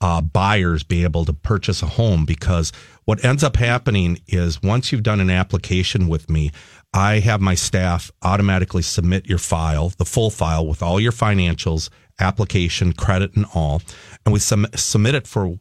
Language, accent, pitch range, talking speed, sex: English, American, 85-105 Hz, 175 wpm, male